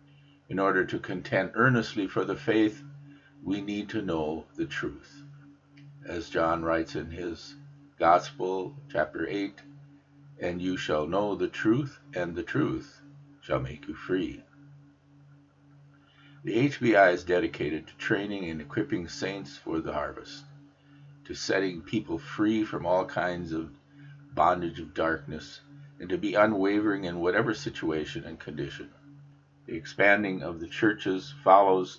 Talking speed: 135 wpm